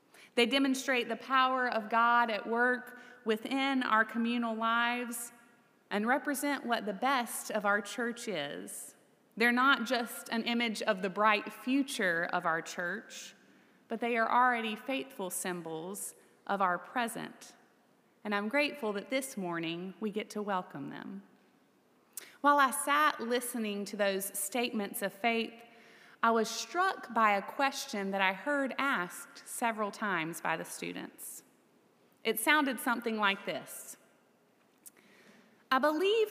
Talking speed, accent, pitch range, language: 140 wpm, American, 205-255 Hz, English